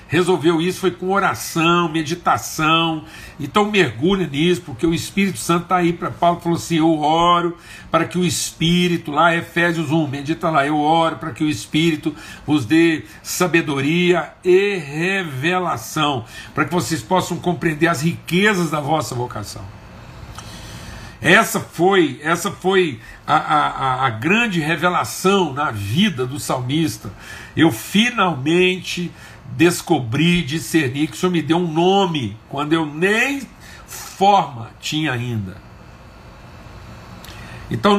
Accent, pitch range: Brazilian, 145-175 Hz